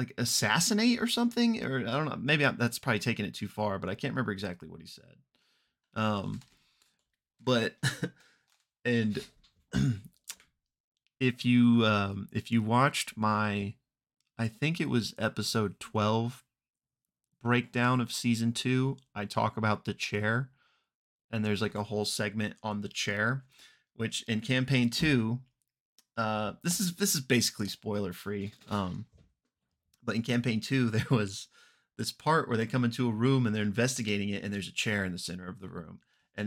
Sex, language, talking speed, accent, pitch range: male, English, 165 wpm, American, 105-125 Hz